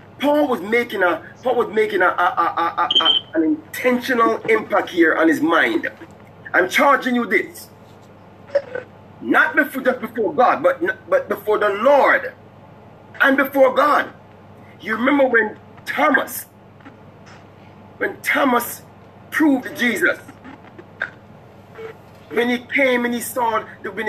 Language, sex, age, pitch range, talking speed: English, male, 30-49, 205-295 Hz, 125 wpm